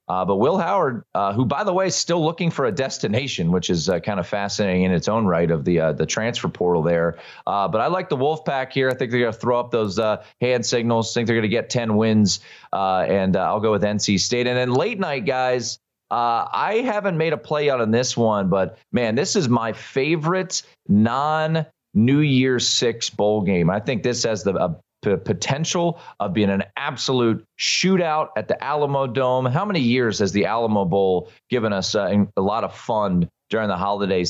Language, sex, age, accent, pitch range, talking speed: English, male, 30-49, American, 100-140 Hz, 215 wpm